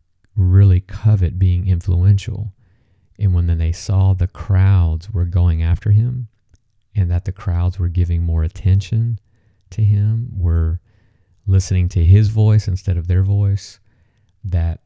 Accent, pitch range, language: American, 85-100 Hz, English